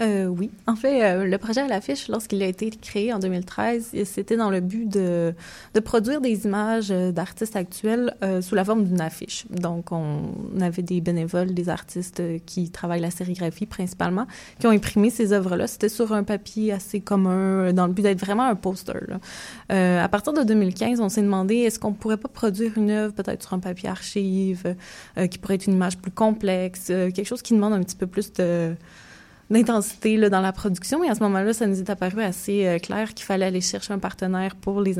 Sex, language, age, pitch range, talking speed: female, French, 20-39, 185-225 Hz, 220 wpm